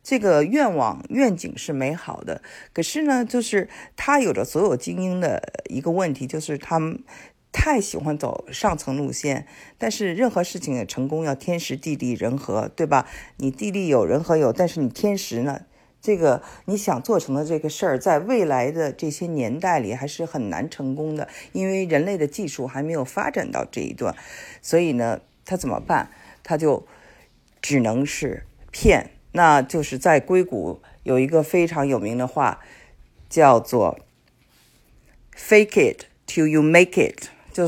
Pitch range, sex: 140-190 Hz, female